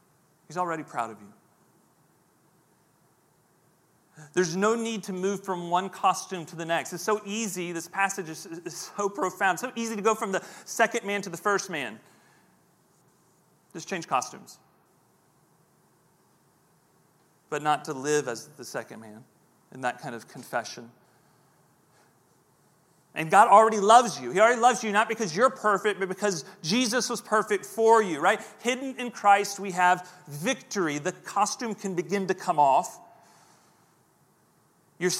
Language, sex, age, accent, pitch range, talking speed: English, male, 40-59, American, 165-210 Hz, 150 wpm